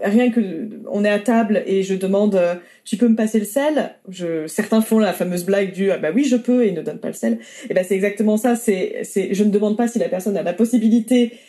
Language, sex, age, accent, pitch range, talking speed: French, female, 20-39, French, 180-230 Hz, 275 wpm